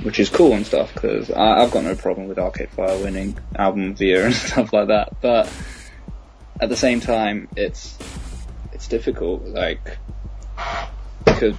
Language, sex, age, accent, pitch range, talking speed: English, male, 10-29, British, 95-110 Hz, 155 wpm